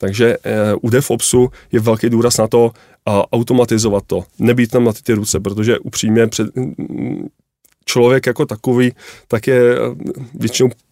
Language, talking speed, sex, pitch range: Czech, 145 wpm, male, 110-125 Hz